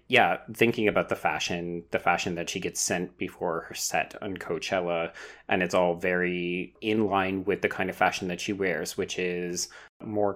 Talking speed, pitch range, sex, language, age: 190 wpm, 85-100 Hz, male, English, 30-49